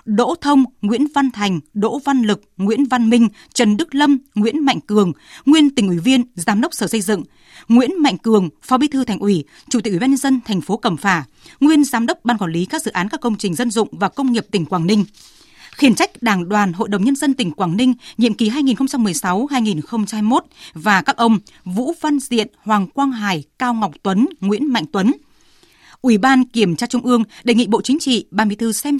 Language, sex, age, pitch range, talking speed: Vietnamese, female, 20-39, 205-260 Hz, 220 wpm